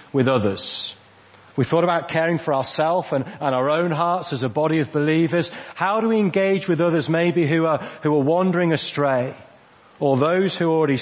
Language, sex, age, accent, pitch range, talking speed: English, male, 40-59, British, 130-170 Hz, 190 wpm